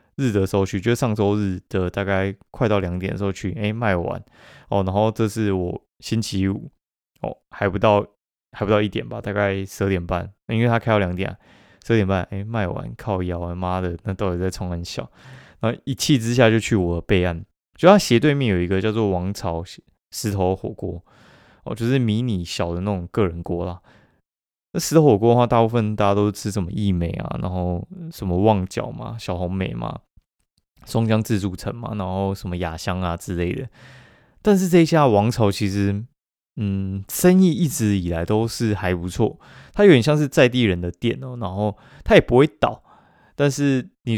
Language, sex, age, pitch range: Chinese, male, 20-39, 95-115 Hz